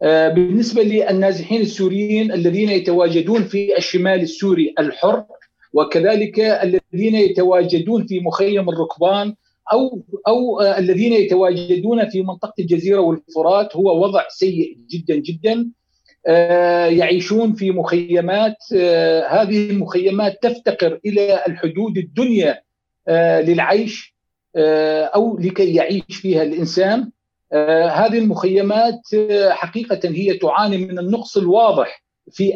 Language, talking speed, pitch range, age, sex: Arabic, 105 wpm, 170-210 Hz, 50-69, male